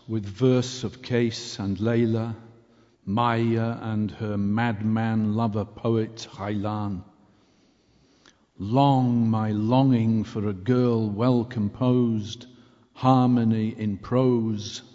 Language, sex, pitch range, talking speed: English, male, 110-130 Hz, 95 wpm